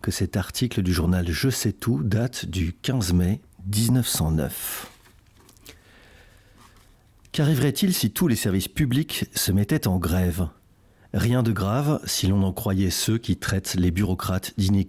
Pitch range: 95-125 Hz